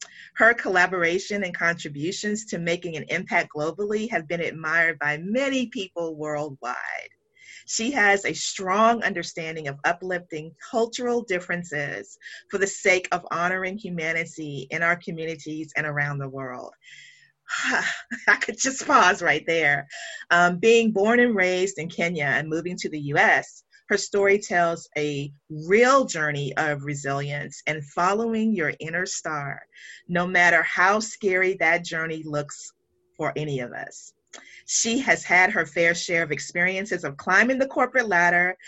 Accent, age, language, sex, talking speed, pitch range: American, 30-49, English, female, 145 wpm, 155-200 Hz